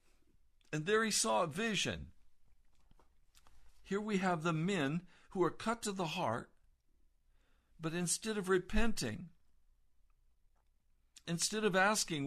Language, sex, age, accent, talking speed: English, male, 60-79, American, 115 wpm